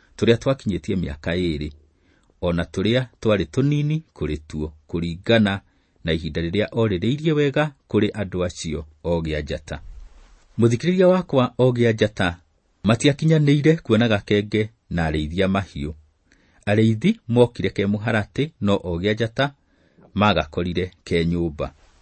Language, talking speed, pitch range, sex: English, 115 wpm, 85-120 Hz, male